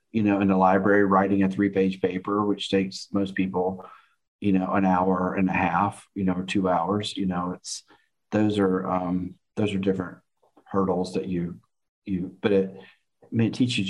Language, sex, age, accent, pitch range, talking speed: English, male, 40-59, American, 95-100 Hz, 195 wpm